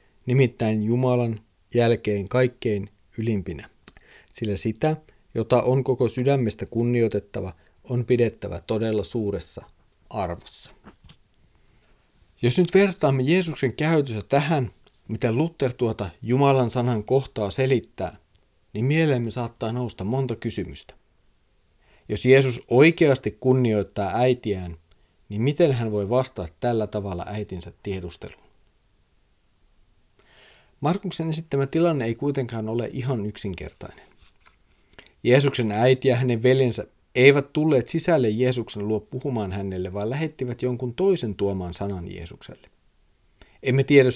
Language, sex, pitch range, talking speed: Finnish, male, 100-135 Hz, 105 wpm